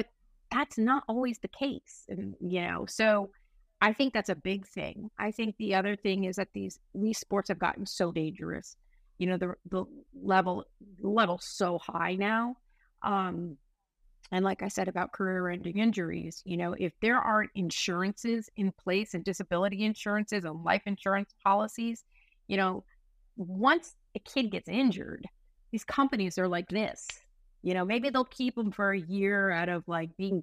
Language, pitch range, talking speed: English, 175-220 Hz, 170 wpm